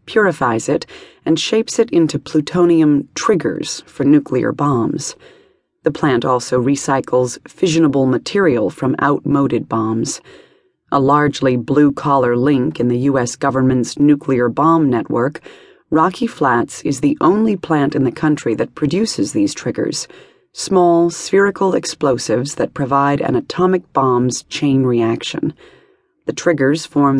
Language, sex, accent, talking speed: English, female, American, 130 wpm